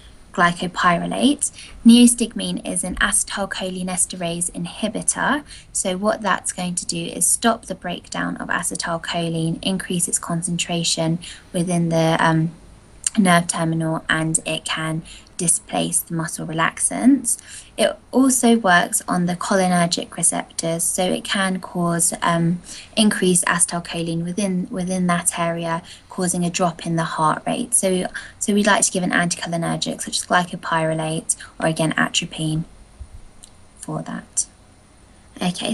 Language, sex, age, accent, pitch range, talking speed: English, female, 20-39, British, 165-205 Hz, 125 wpm